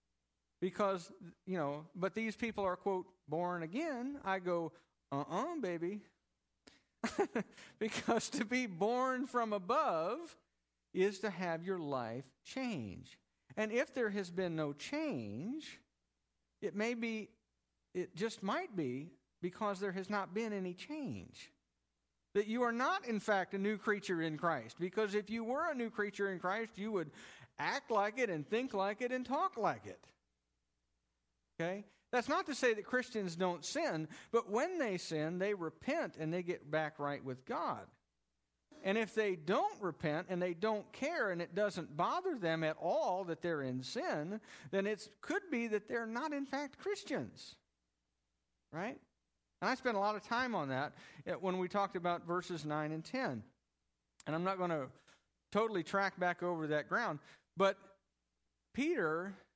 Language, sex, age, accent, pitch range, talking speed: English, male, 50-69, American, 155-220 Hz, 165 wpm